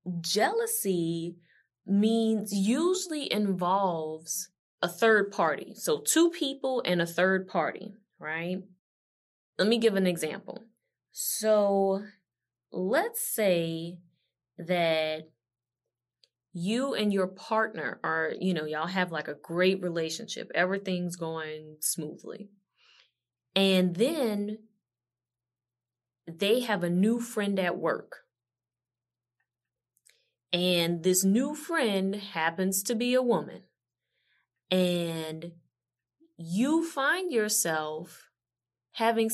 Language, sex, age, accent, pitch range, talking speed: English, female, 20-39, American, 160-220 Hz, 95 wpm